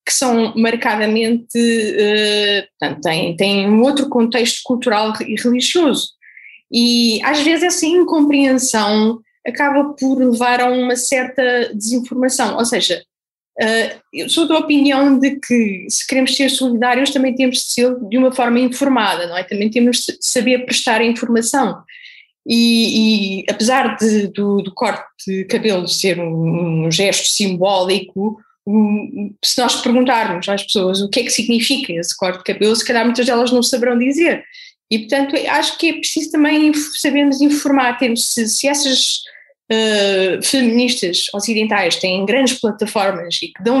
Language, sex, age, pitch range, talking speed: Portuguese, female, 20-39, 210-275 Hz, 150 wpm